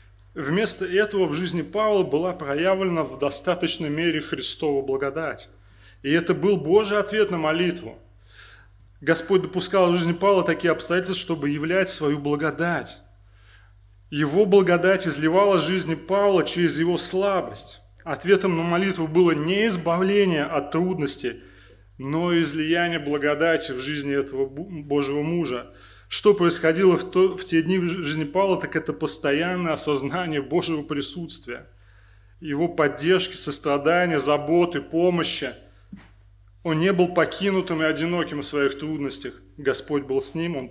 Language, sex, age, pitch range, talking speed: Russian, male, 30-49, 120-170 Hz, 130 wpm